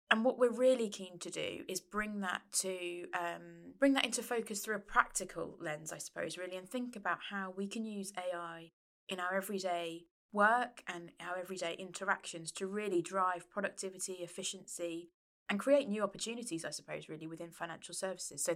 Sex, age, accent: female, 20-39, British